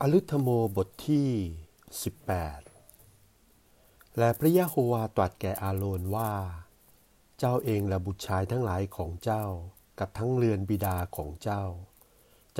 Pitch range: 95-115 Hz